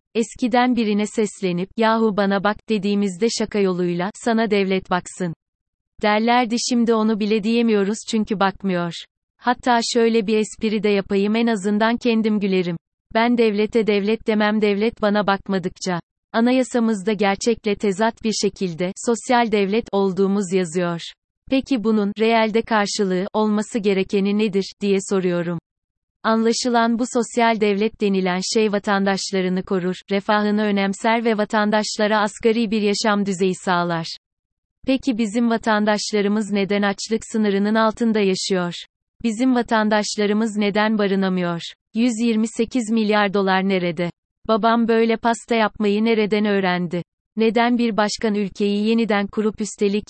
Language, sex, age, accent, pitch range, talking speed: Turkish, female, 30-49, native, 195-225 Hz, 120 wpm